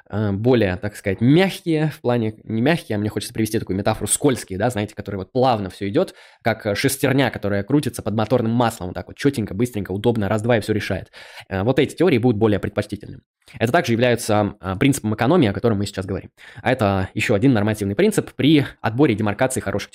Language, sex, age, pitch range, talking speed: Russian, male, 20-39, 105-125 Hz, 200 wpm